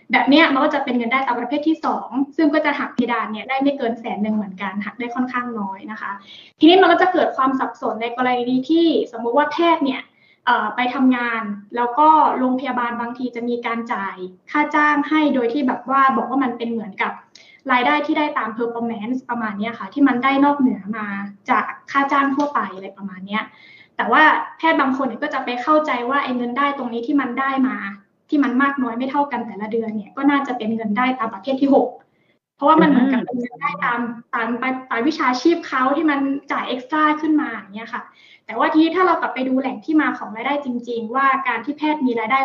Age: 20-39